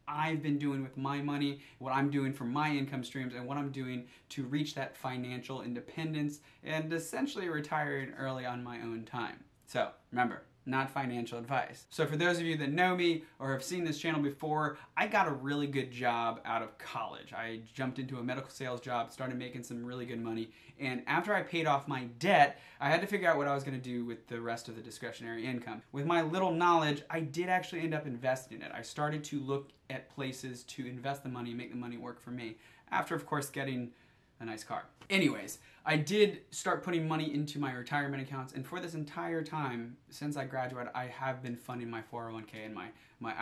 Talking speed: 215 wpm